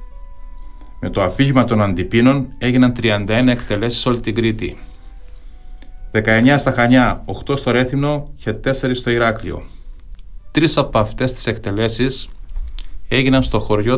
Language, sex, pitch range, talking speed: Greek, male, 90-120 Hz, 125 wpm